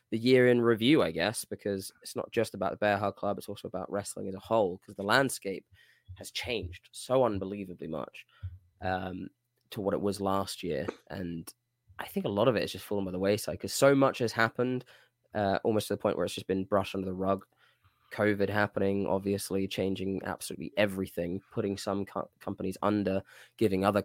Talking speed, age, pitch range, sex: 200 wpm, 20-39, 95-115 Hz, male